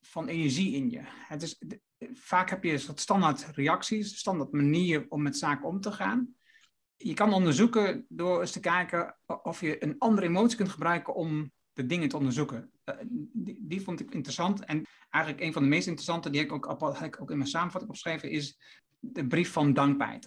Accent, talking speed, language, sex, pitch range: Dutch, 205 wpm, Dutch, male, 145-205 Hz